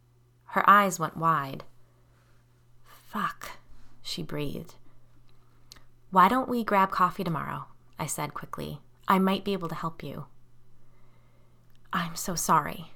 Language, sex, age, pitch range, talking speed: English, female, 20-39, 135-195 Hz, 120 wpm